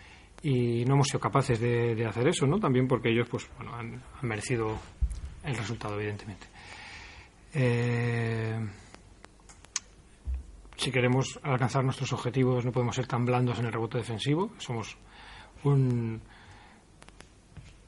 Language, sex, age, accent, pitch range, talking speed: Spanish, male, 40-59, Spanish, 110-140 Hz, 130 wpm